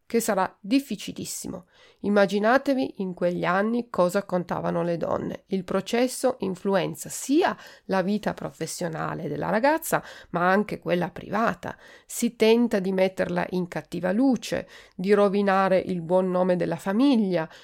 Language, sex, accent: Italian, female, native